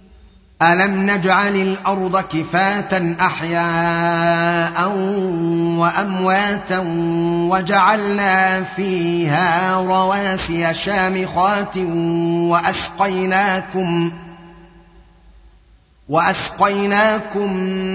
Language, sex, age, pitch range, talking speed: Arabic, male, 30-49, 170-190 Hz, 40 wpm